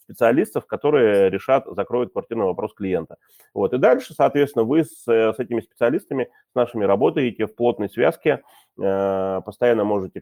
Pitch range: 95-115 Hz